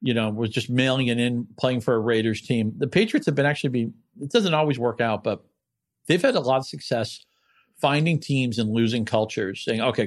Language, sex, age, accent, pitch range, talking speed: English, male, 40-59, American, 110-135 Hz, 220 wpm